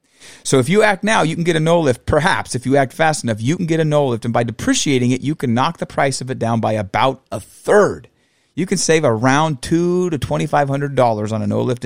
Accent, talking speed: American, 245 wpm